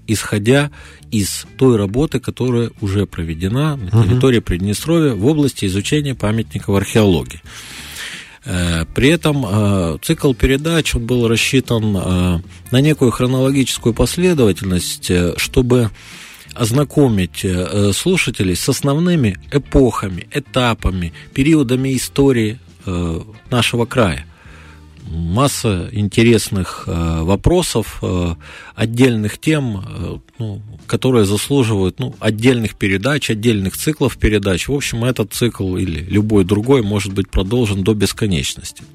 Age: 40-59